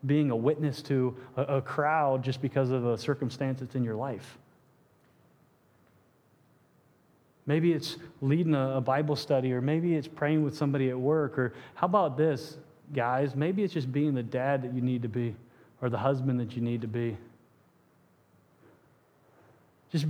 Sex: male